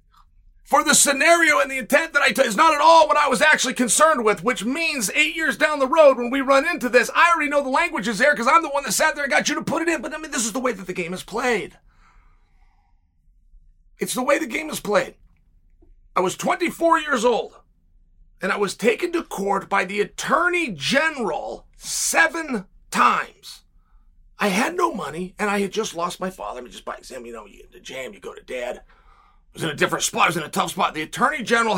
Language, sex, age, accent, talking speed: English, male, 40-59, American, 245 wpm